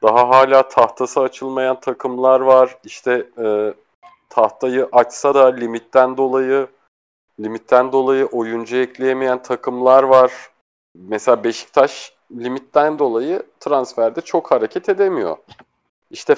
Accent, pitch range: native, 125-155 Hz